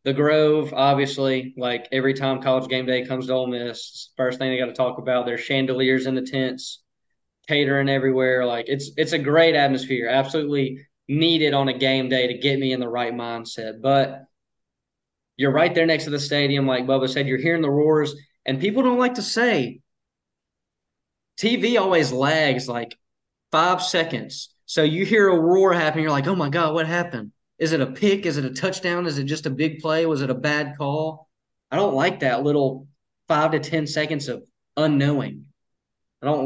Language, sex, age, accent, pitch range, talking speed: English, male, 20-39, American, 130-155 Hz, 195 wpm